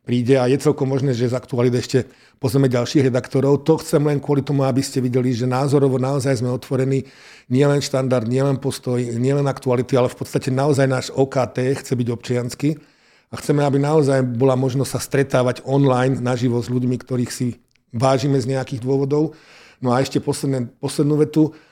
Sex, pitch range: male, 120-135 Hz